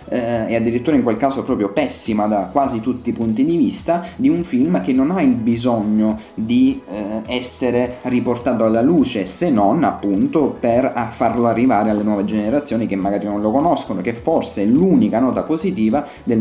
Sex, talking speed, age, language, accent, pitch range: male, 175 wpm, 30-49, Italian, native, 105-125 Hz